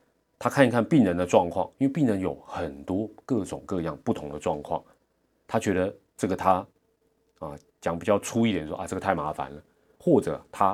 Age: 30-49